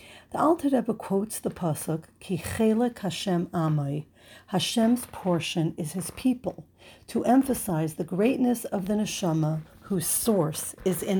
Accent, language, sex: American, English, female